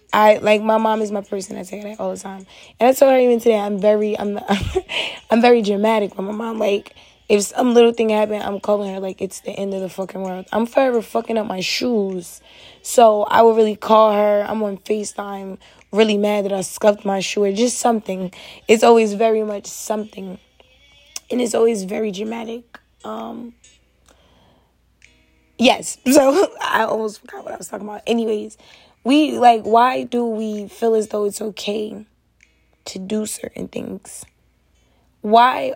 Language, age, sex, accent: English, 20-39, female, American